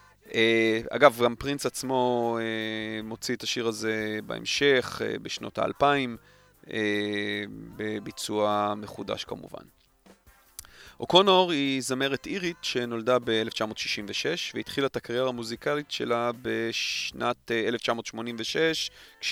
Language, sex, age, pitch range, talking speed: Hebrew, male, 30-49, 110-130 Hz, 100 wpm